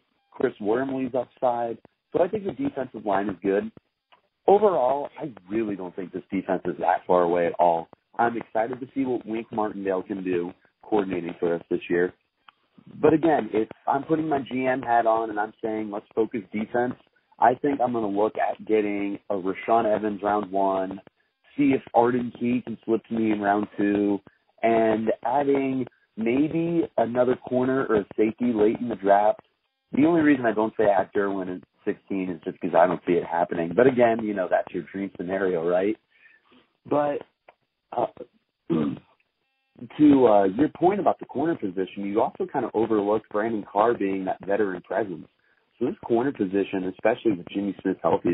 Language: English